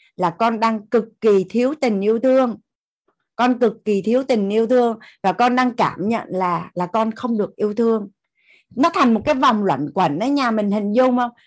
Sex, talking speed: female, 215 wpm